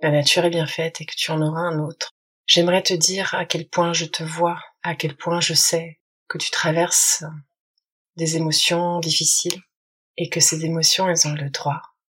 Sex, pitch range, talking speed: female, 155-175 Hz, 200 wpm